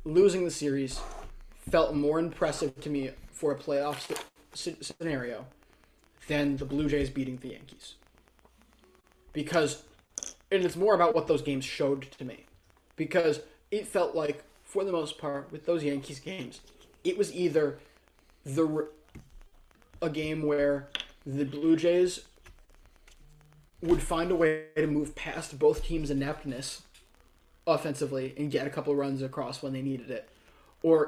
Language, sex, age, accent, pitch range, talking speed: English, male, 20-39, American, 140-165 Hz, 145 wpm